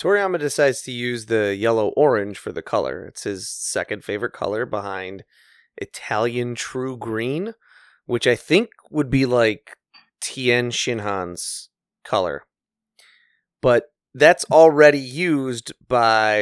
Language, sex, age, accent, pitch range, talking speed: English, male, 30-49, American, 105-135 Hz, 120 wpm